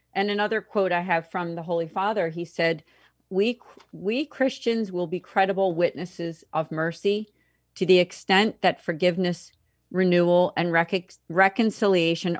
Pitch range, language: 165-195 Hz, English